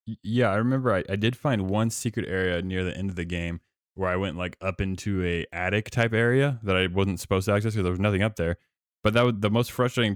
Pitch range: 90-105 Hz